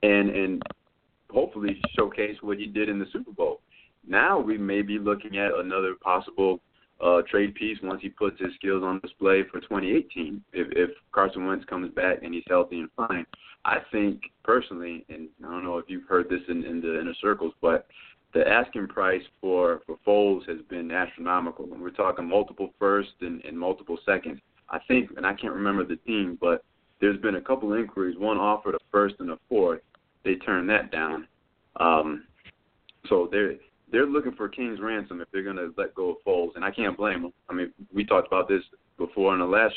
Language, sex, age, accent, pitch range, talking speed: English, male, 20-39, American, 90-105 Hz, 200 wpm